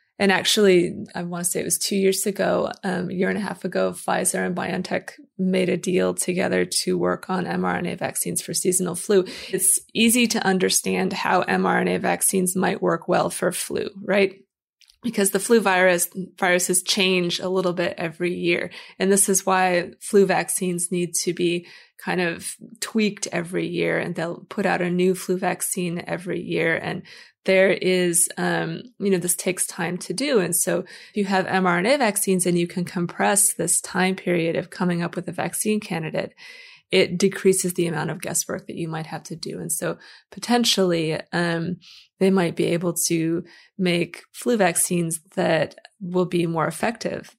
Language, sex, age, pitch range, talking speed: English, female, 20-39, 175-195 Hz, 180 wpm